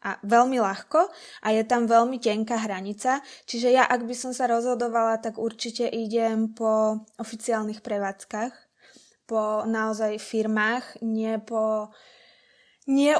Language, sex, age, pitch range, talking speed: Slovak, female, 20-39, 220-250 Hz, 125 wpm